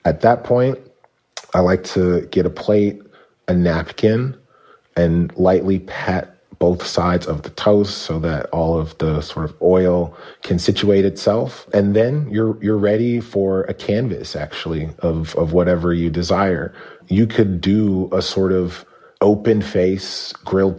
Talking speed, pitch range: 150 wpm, 90-105 Hz